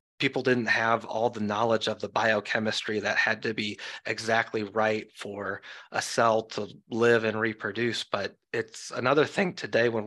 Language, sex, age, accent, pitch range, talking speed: English, male, 30-49, American, 105-120 Hz, 165 wpm